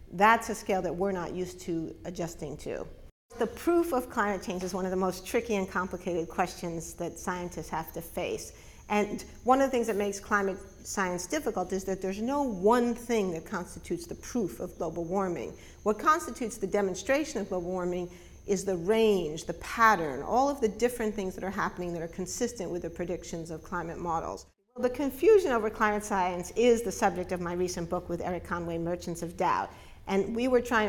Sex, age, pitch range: female, 50-69, 175-220 Hz